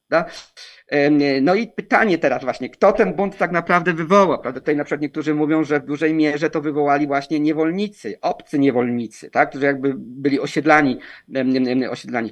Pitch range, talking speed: 140-165 Hz, 155 wpm